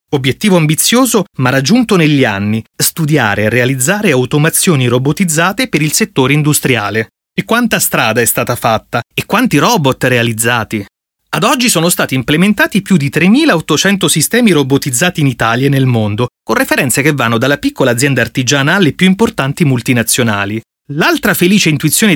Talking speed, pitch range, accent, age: 150 wpm, 125-185 Hz, native, 30-49